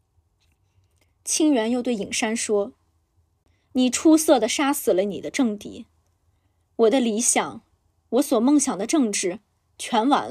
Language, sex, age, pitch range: Chinese, female, 20-39, 195-270 Hz